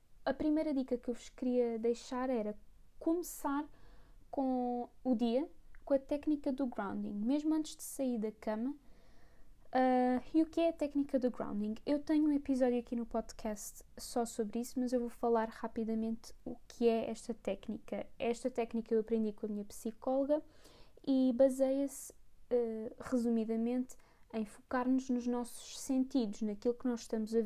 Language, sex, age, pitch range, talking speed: Portuguese, female, 10-29, 230-265 Hz, 160 wpm